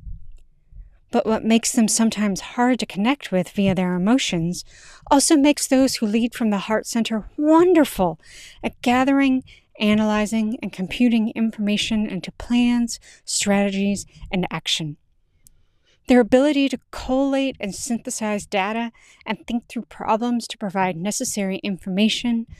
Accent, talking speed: American, 125 wpm